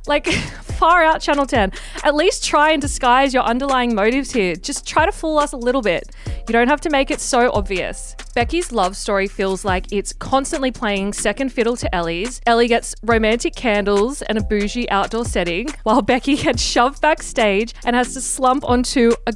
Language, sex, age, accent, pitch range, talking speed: English, female, 20-39, Australian, 210-275 Hz, 190 wpm